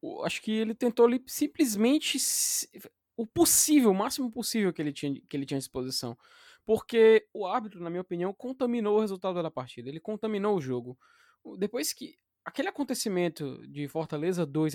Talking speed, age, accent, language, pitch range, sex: 165 wpm, 20-39, Brazilian, Portuguese, 160-225 Hz, male